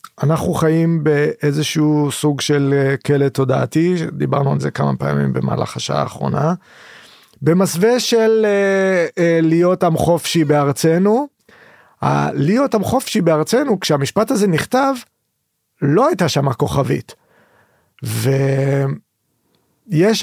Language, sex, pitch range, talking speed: Hebrew, male, 145-175 Hz, 105 wpm